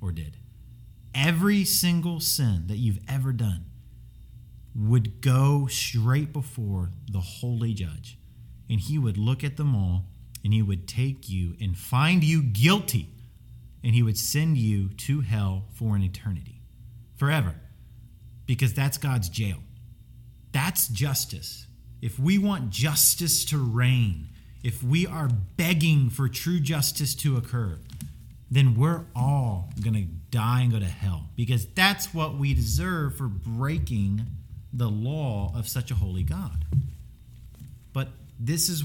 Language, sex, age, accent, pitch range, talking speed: English, male, 30-49, American, 110-145 Hz, 140 wpm